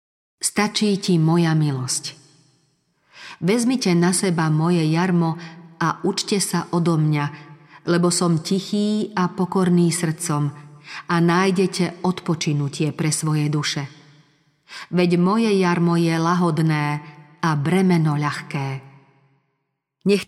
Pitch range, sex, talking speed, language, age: 155-190 Hz, female, 105 wpm, Slovak, 40-59